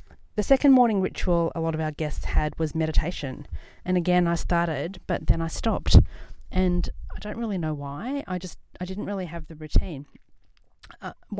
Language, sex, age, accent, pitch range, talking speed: English, female, 40-59, Australian, 145-180 Hz, 185 wpm